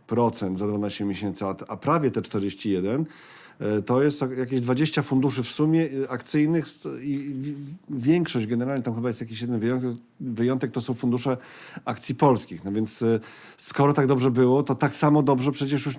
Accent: native